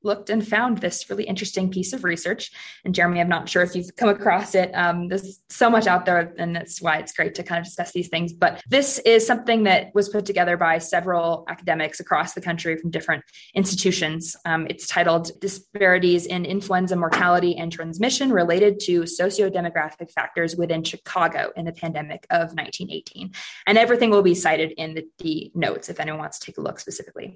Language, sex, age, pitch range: English, female, 20-39, 170-200 Hz